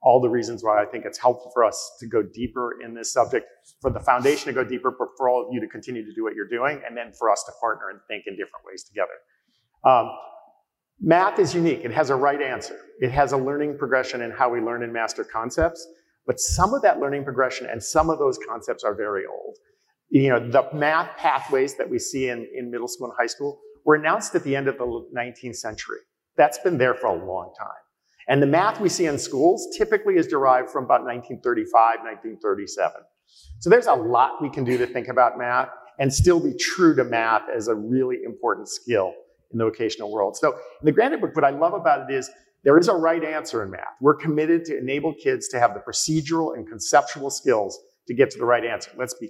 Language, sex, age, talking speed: English, male, 50-69, 230 wpm